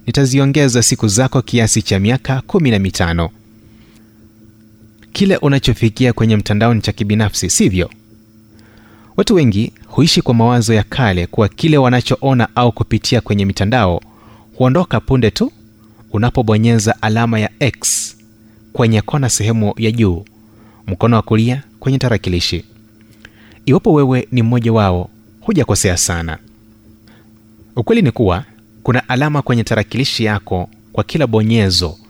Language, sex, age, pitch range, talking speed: Swahili, male, 30-49, 110-120 Hz, 120 wpm